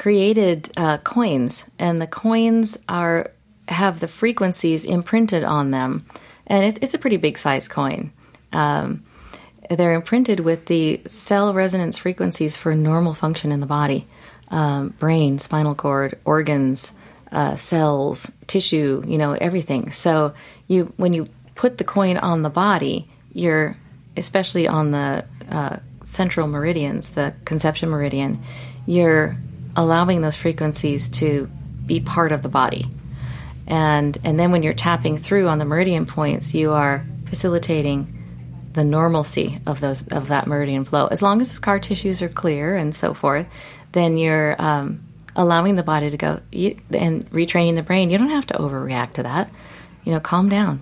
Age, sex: 30-49, female